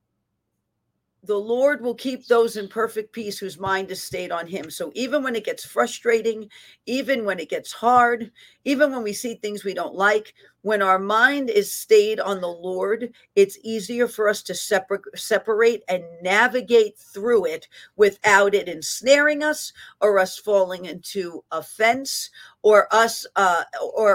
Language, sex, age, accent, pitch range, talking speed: English, female, 50-69, American, 195-235 Hz, 155 wpm